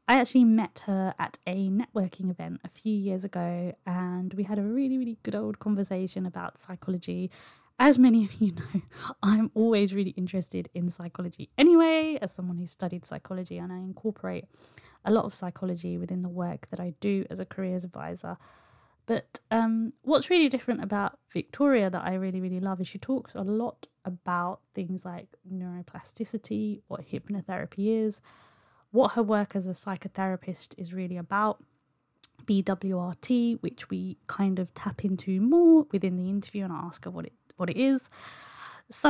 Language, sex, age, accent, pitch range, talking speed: English, female, 20-39, British, 185-225 Hz, 170 wpm